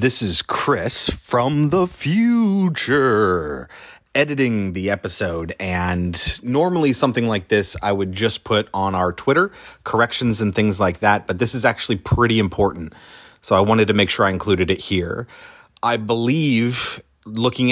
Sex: male